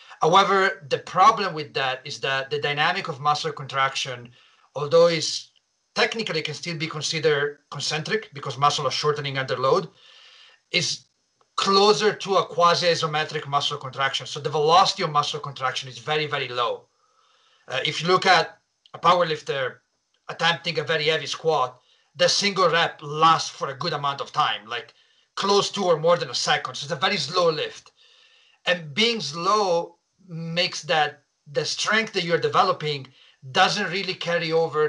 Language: English